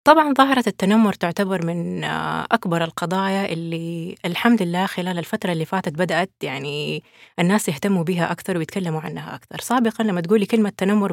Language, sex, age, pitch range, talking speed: Arabic, female, 20-39, 175-215 Hz, 150 wpm